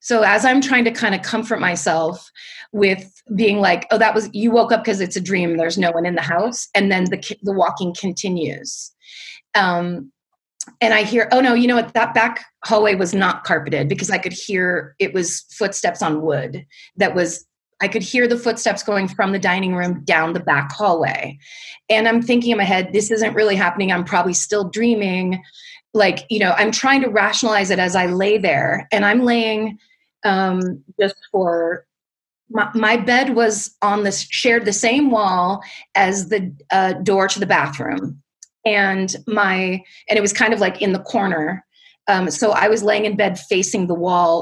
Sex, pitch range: female, 180-220 Hz